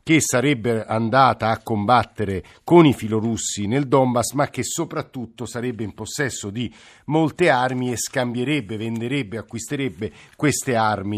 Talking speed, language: 135 wpm, Italian